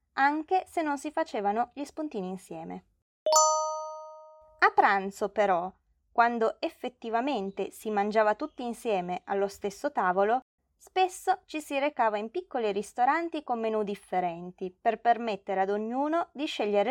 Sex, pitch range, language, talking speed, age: female, 195-290 Hz, Italian, 130 wpm, 20-39